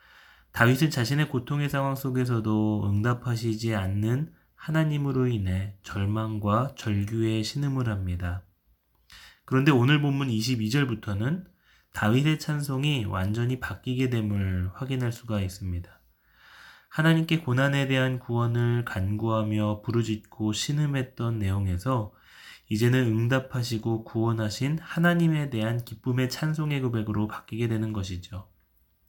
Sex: male